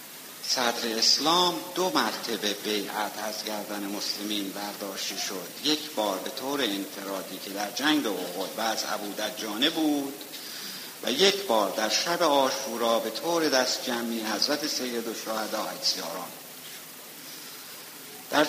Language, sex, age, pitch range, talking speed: Persian, male, 60-79, 105-145 Hz, 125 wpm